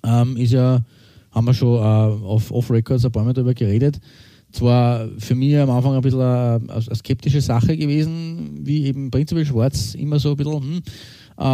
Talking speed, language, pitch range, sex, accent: 175 wpm, German, 110-135 Hz, male, Austrian